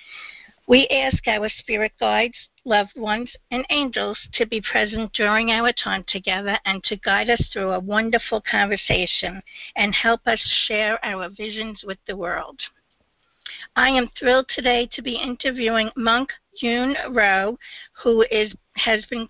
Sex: female